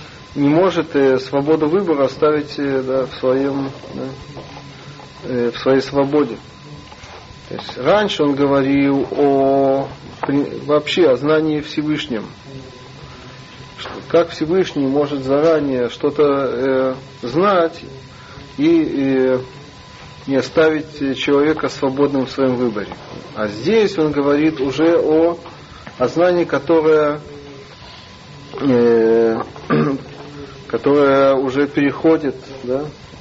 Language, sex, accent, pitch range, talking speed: Russian, male, native, 130-155 Hz, 100 wpm